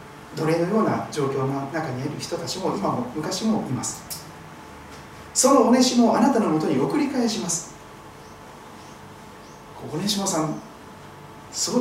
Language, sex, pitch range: Japanese, male, 145-220 Hz